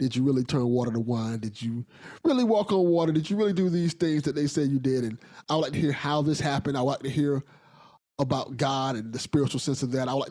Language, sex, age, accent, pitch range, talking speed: English, male, 20-39, American, 140-175 Hz, 285 wpm